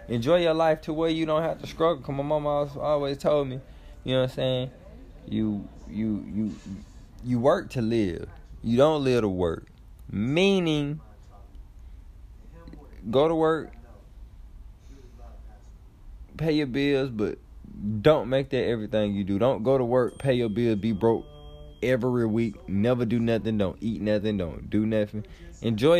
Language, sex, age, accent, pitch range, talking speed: English, male, 20-39, American, 105-145 Hz, 160 wpm